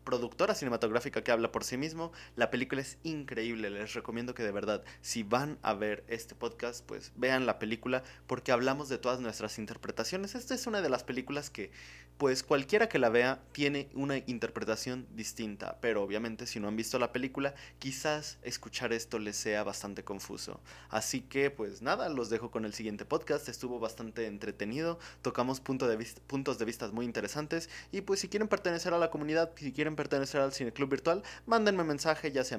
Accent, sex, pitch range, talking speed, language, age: Mexican, male, 110-140 Hz, 185 wpm, Spanish, 20-39